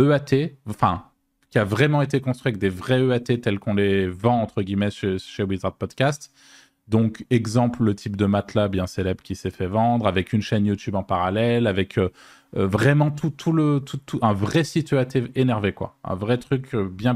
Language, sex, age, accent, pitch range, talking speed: French, male, 20-39, French, 100-125 Hz, 205 wpm